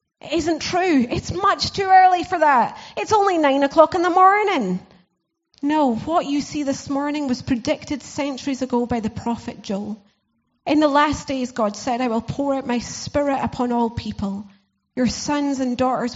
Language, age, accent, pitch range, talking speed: English, 30-49, British, 220-275 Hz, 180 wpm